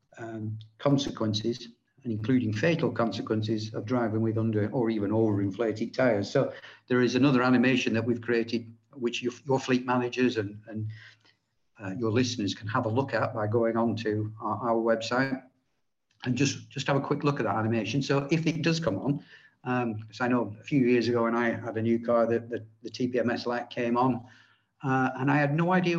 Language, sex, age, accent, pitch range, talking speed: English, male, 50-69, British, 110-125 Hz, 200 wpm